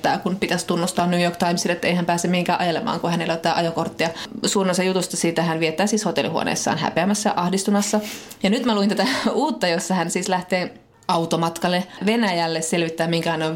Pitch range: 160-200 Hz